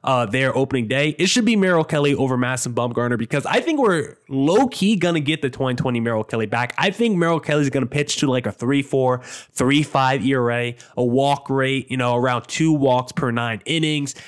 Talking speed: 220 wpm